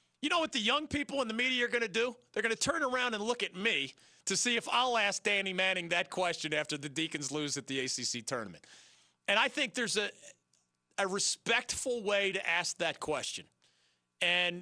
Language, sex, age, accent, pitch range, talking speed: English, male, 40-59, American, 165-230 Hz, 215 wpm